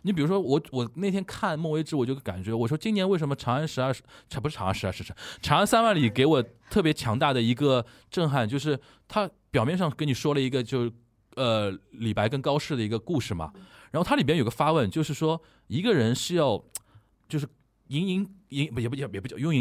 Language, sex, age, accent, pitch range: Chinese, male, 20-39, native, 110-160 Hz